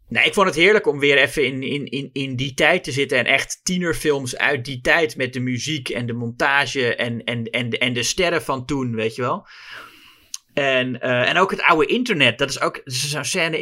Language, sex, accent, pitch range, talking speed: Dutch, male, Dutch, 120-165 Hz, 235 wpm